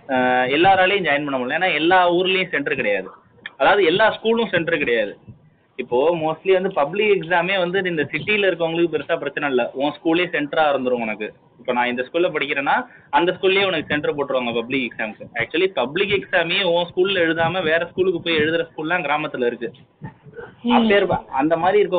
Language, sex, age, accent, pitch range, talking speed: Tamil, male, 20-39, native, 140-185 Hz, 160 wpm